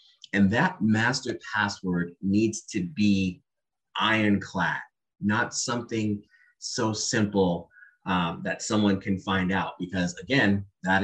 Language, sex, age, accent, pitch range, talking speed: English, male, 30-49, American, 95-120 Hz, 115 wpm